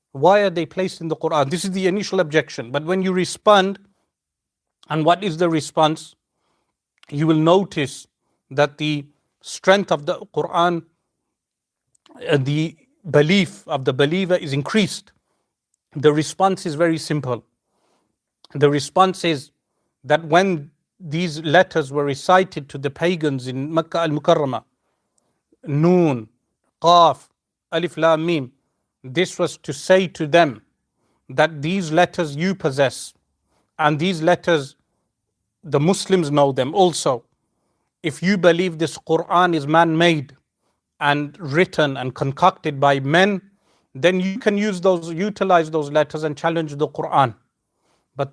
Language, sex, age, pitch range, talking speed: English, male, 40-59, 145-180 Hz, 135 wpm